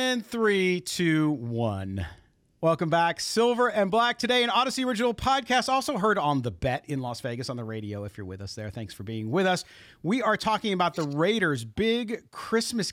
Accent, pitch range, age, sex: American, 125-180 Hz, 40-59, male